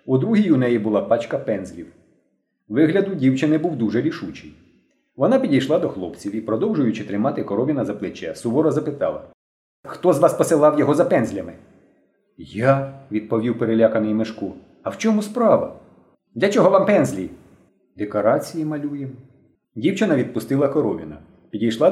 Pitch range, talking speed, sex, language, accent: 110-170 Hz, 135 wpm, male, Ukrainian, native